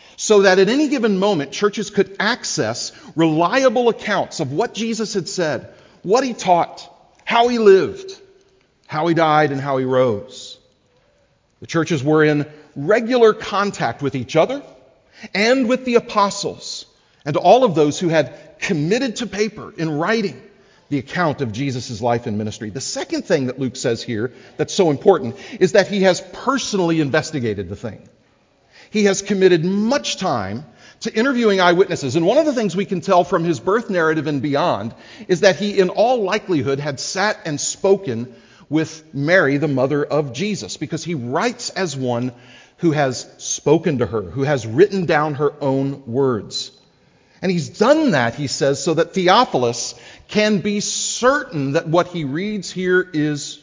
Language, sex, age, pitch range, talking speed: English, male, 40-59, 145-210 Hz, 170 wpm